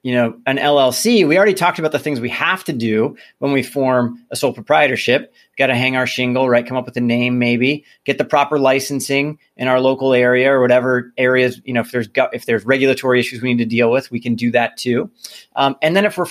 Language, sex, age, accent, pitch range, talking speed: English, male, 30-49, American, 125-150 Hz, 250 wpm